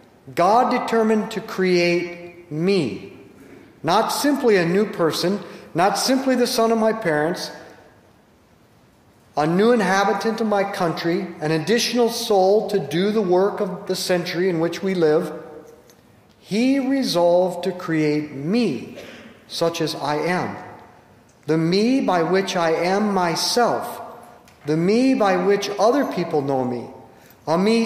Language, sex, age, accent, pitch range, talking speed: English, male, 50-69, American, 170-225 Hz, 135 wpm